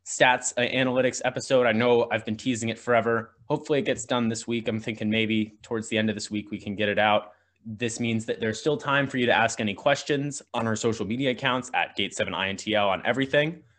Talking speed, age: 220 wpm, 20-39